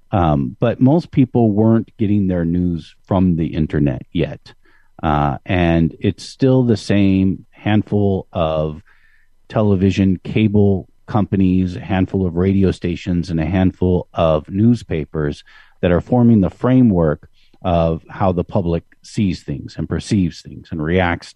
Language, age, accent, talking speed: English, 50-69, American, 140 wpm